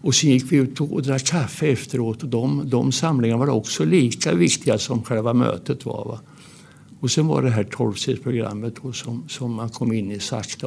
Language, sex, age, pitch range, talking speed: Swedish, male, 60-79, 115-145 Hz, 200 wpm